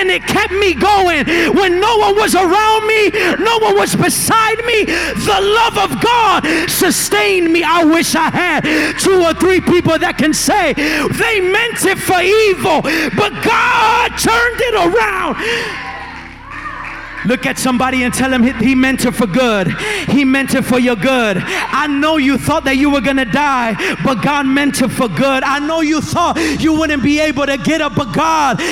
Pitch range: 285-365 Hz